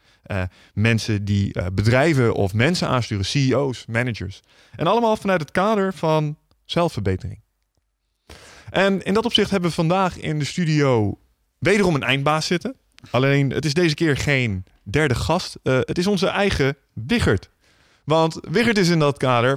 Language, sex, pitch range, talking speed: Dutch, male, 105-150 Hz, 155 wpm